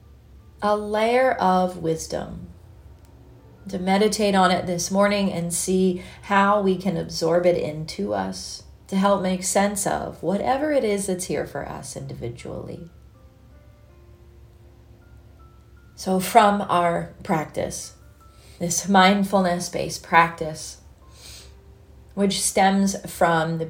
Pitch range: 155-195 Hz